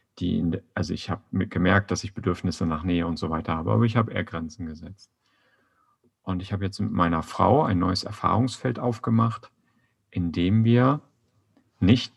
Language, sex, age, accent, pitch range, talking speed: German, male, 50-69, German, 95-120 Hz, 165 wpm